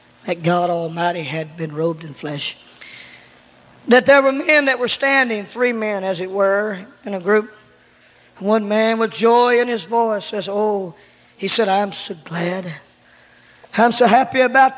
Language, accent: English, American